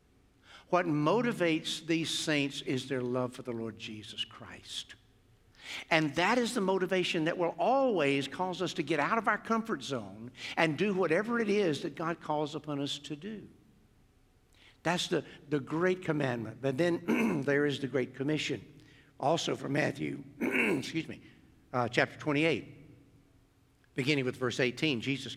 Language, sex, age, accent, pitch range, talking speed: English, male, 60-79, American, 125-160 Hz, 155 wpm